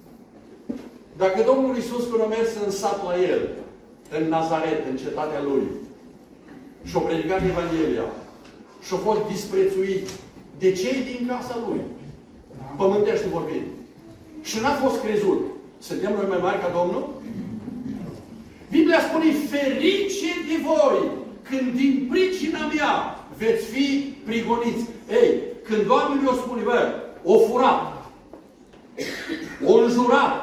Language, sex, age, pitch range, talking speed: Romanian, male, 60-79, 220-295 Hz, 120 wpm